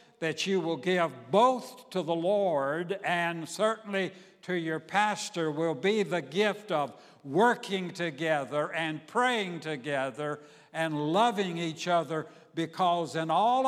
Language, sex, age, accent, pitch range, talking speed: English, male, 60-79, American, 150-190 Hz, 130 wpm